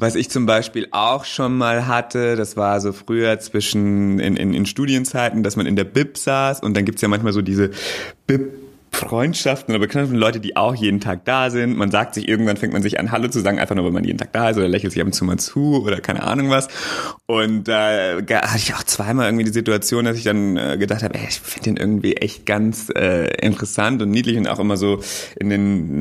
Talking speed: 240 wpm